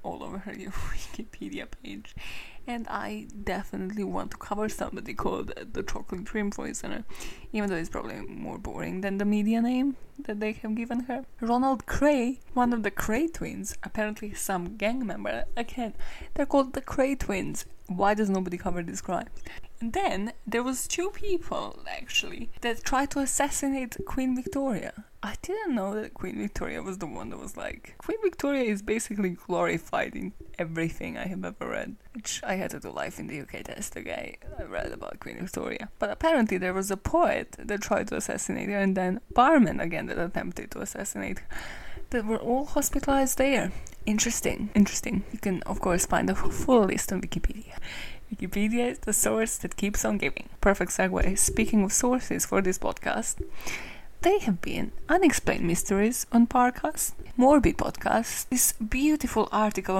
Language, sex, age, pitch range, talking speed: English, female, 20-39, 200-260 Hz, 170 wpm